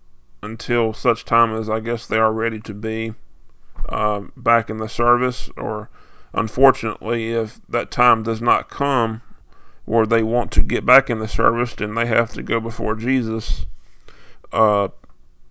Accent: American